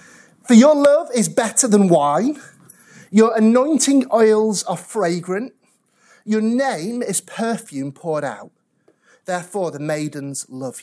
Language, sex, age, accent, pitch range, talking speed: English, male, 30-49, British, 190-290 Hz, 120 wpm